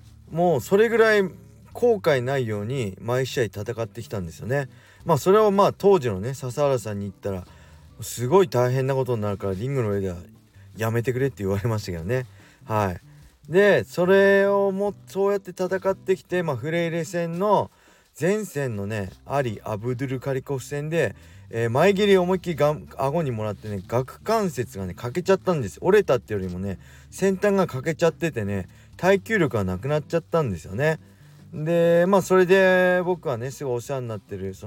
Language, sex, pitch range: Japanese, male, 100-165 Hz